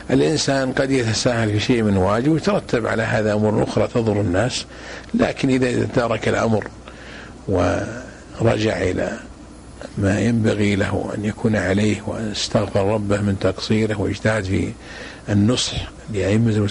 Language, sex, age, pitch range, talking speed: Arabic, male, 50-69, 100-120 Hz, 130 wpm